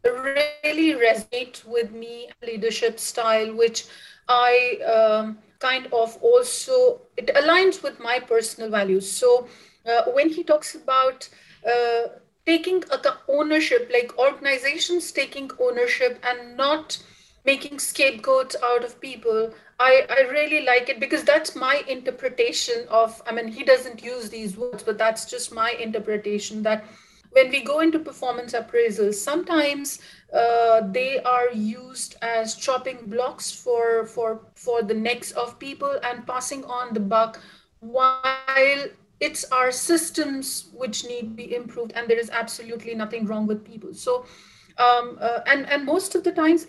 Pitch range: 230-290 Hz